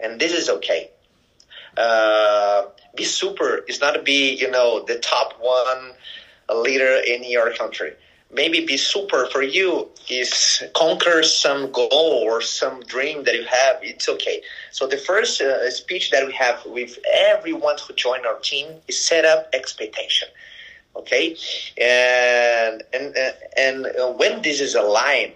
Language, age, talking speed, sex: English, 30-49, 150 wpm, male